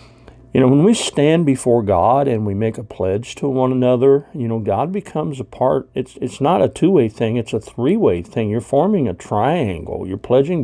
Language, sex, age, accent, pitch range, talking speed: English, male, 50-69, American, 110-135 Hz, 210 wpm